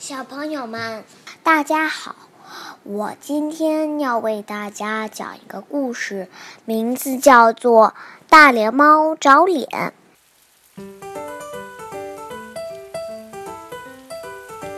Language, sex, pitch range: Chinese, male, 215-305 Hz